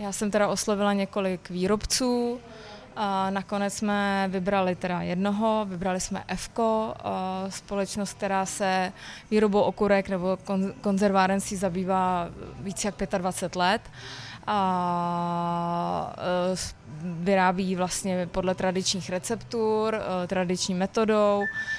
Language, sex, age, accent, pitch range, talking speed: Czech, female, 20-39, native, 180-205 Hz, 95 wpm